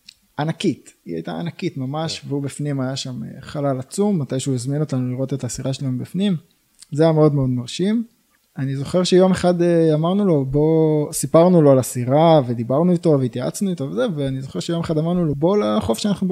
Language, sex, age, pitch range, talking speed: Hebrew, male, 20-39, 130-165 Hz, 180 wpm